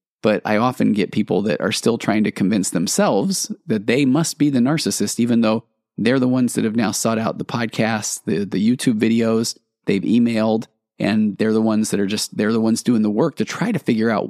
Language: English